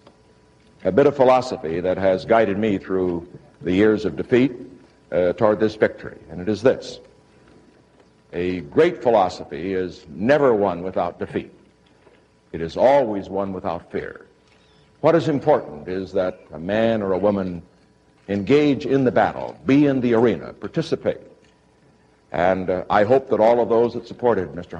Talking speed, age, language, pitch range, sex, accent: 155 wpm, 60-79, English, 90-125 Hz, male, American